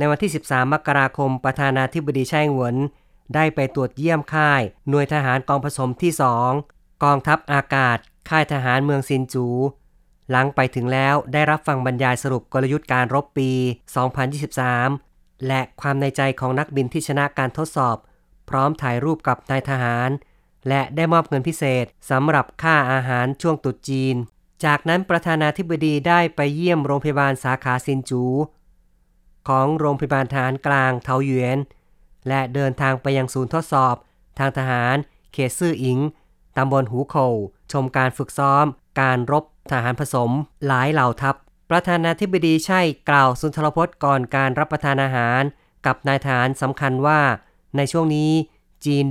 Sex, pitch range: female, 130-150 Hz